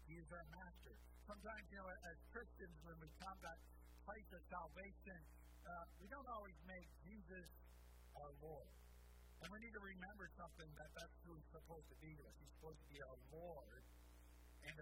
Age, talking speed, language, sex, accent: 60-79, 185 wpm, English, male, American